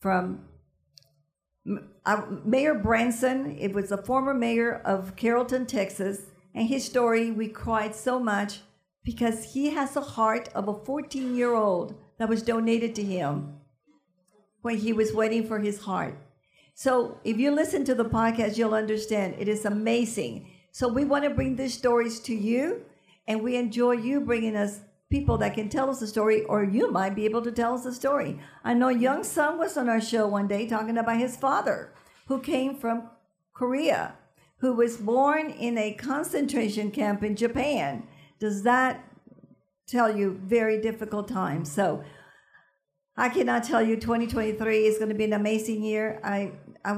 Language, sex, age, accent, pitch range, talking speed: English, female, 50-69, American, 205-245 Hz, 165 wpm